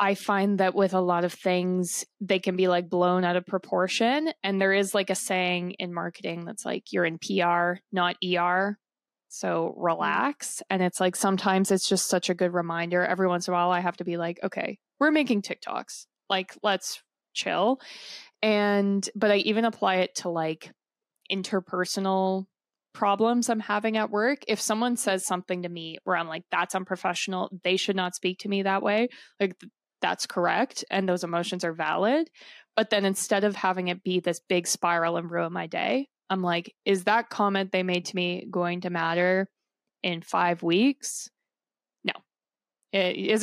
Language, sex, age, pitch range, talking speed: English, female, 20-39, 175-205 Hz, 180 wpm